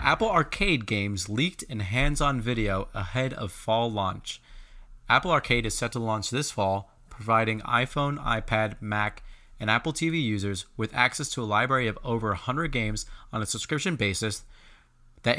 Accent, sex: American, male